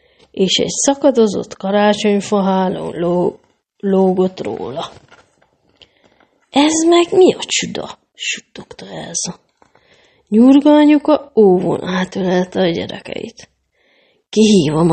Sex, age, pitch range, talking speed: female, 30-49, 195-275 Hz, 90 wpm